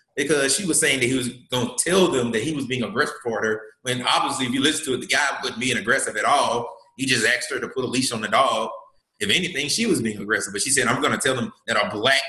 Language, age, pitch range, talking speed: English, 30-49, 115-150 Hz, 295 wpm